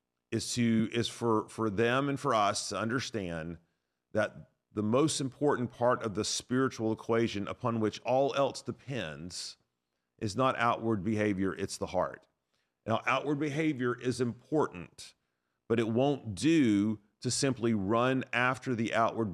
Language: English